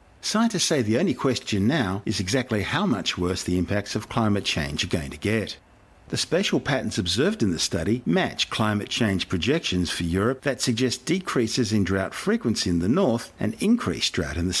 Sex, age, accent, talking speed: male, 50-69, Australian, 195 wpm